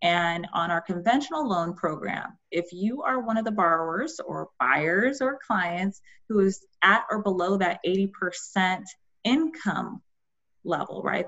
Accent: American